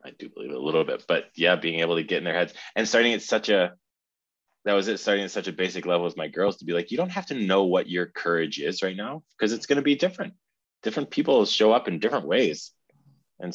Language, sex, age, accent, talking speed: English, male, 20-39, American, 270 wpm